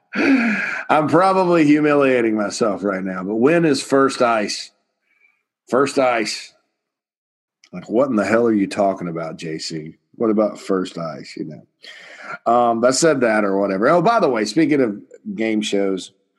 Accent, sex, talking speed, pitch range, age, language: American, male, 155 wpm, 95-120 Hz, 40-59, English